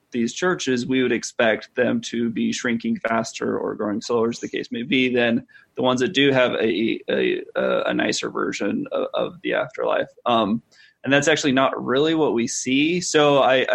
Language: English